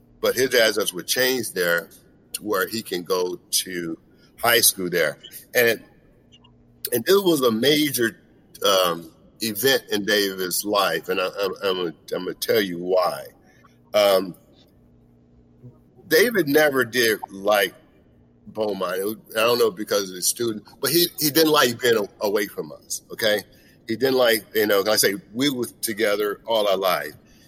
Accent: American